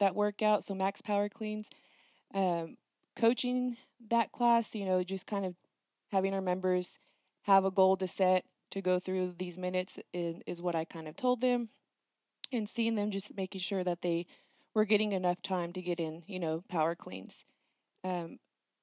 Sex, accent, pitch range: female, American, 185-215 Hz